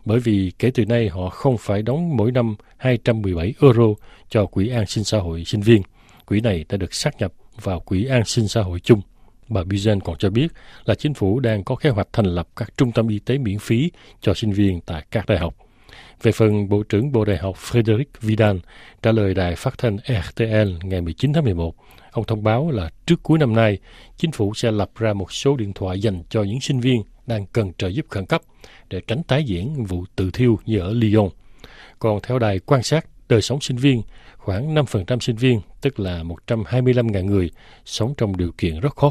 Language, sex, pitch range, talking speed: Vietnamese, male, 95-125 Hz, 220 wpm